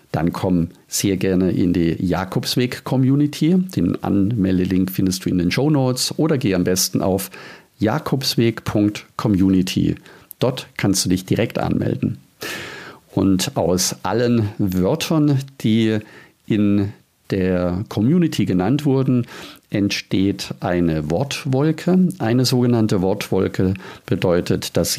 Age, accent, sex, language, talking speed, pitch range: 50-69, German, male, German, 105 wpm, 95-130 Hz